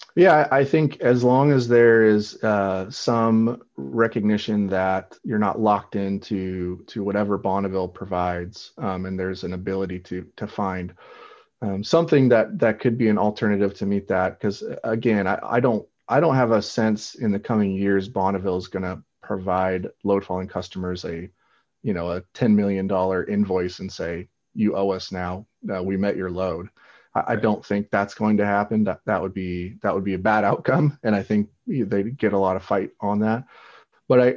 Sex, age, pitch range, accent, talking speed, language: male, 30-49, 95-110 Hz, American, 190 wpm, English